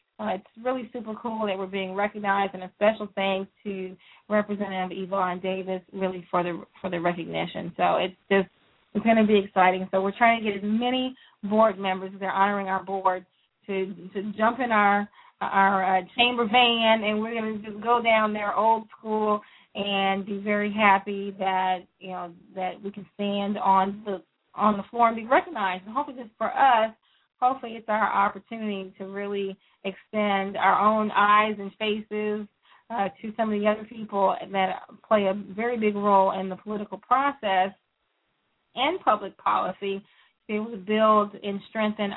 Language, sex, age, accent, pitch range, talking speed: English, female, 20-39, American, 195-215 Hz, 180 wpm